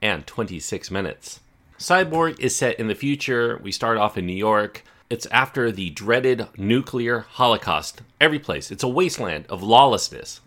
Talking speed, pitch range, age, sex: 160 wpm, 95-115 Hz, 40-59, male